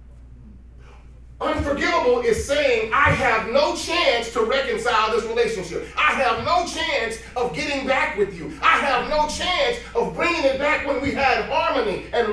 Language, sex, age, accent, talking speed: English, male, 40-59, American, 160 wpm